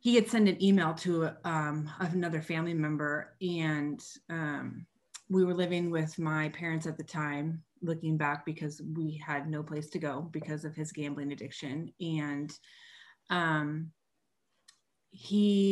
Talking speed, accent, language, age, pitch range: 145 wpm, American, English, 30-49, 150-175 Hz